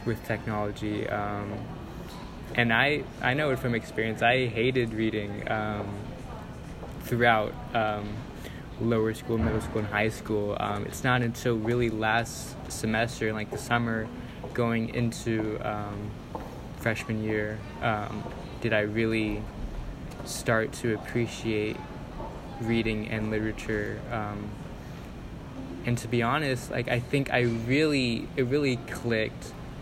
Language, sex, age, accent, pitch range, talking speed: English, male, 20-39, American, 105-120 Hz, 125 wpm